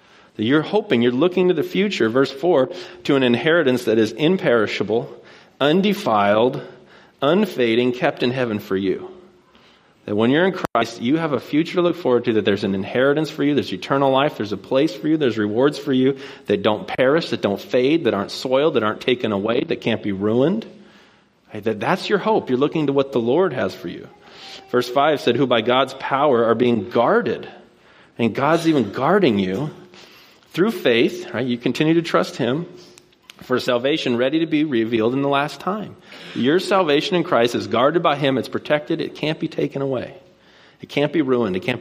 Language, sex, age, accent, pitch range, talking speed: English, male, 40-59, American, 115-170 Hz, 195 wpm